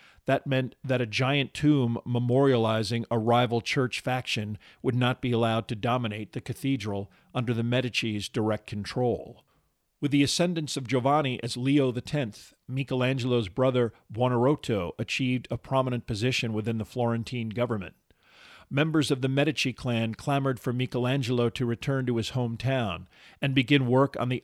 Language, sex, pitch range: English, male, 115-135 Hz